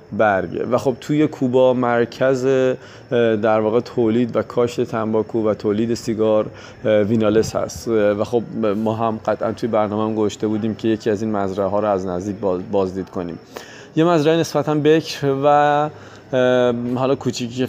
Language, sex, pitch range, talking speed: Persian, male, 110-120 Hz, 155 wpm